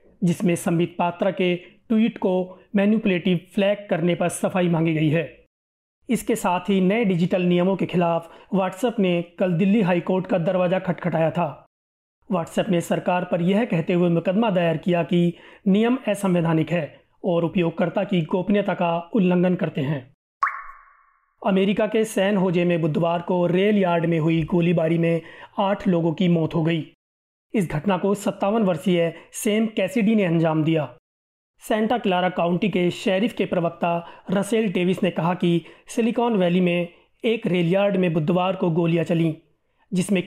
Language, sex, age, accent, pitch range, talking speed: Hindi, male, 30-49, native, 170-200 Hz, 155 wpm